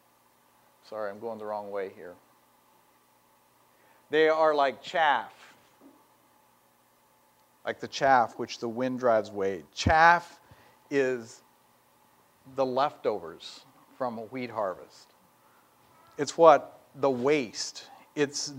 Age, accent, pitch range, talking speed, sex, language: 50-69, American, 125-155 Hz, 105 wpm, male, English